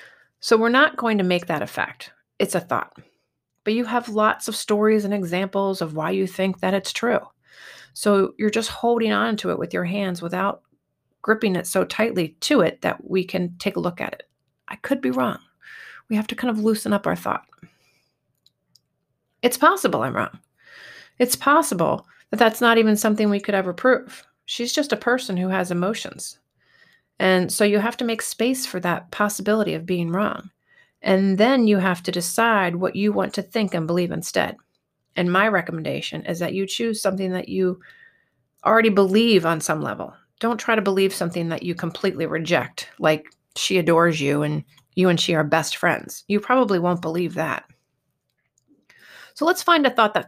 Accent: American